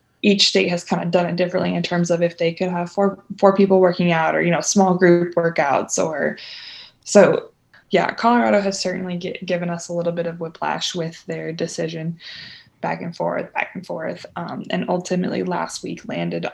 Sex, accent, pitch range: female, American, 165-190 Hz